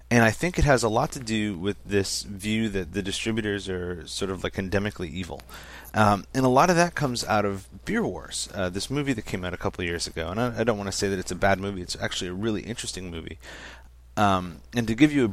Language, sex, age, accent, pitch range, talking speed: English, male, 30-49, American, 90-105 Hz, 260 wpm